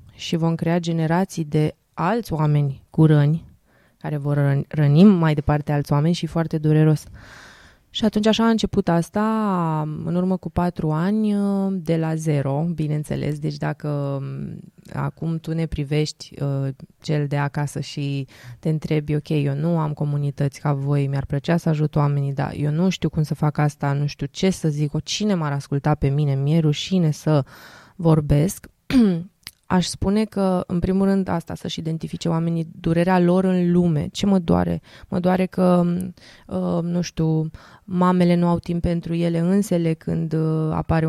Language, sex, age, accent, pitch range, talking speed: English, female, 20-39, Romanian, 150-175 Hz, 160 wpm